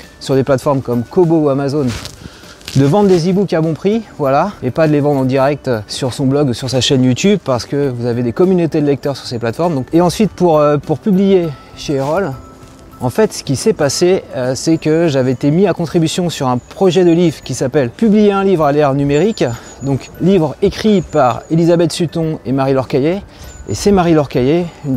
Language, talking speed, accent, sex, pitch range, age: French, 215 wpm, French, male, 135-175 Hz, 30-49